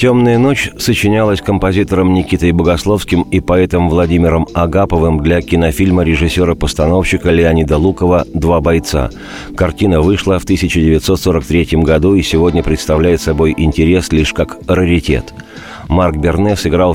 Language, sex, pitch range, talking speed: Russian, male, 80-95 Hz, 115 wpm